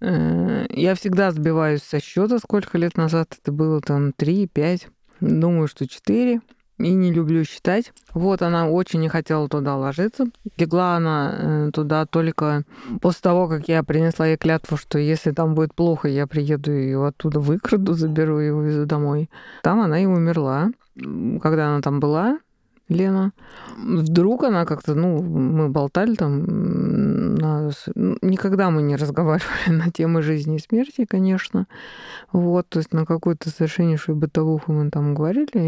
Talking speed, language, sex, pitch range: 145 wpm, Russian, female, 150-185 Hz